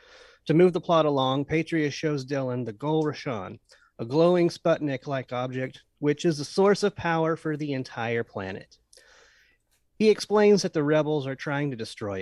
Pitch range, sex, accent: 130-170 Hz, male, American